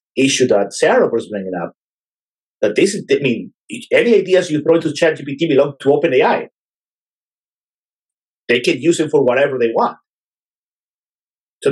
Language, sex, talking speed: English, male, 160 wpm